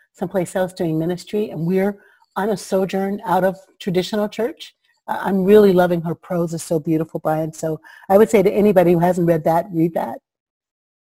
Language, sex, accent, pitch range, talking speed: English, female, American, 170-210 Hz, 185 wpm